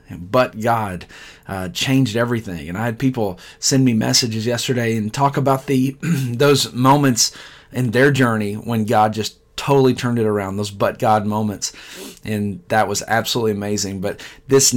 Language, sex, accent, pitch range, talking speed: English, male, American, 105-135 Hz, 165 wpm